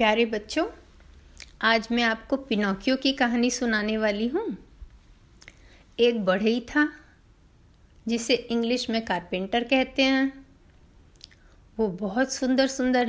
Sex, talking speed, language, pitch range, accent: female, 115 wpm, Hindi, 220-315 Hz, native